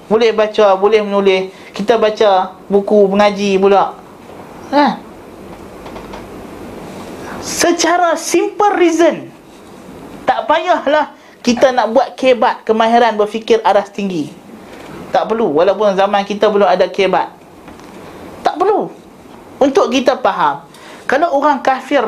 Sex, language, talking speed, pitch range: male, Malay, 105 wpm, 220-275 Hz